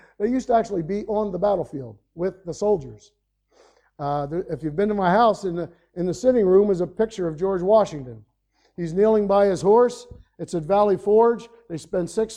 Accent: American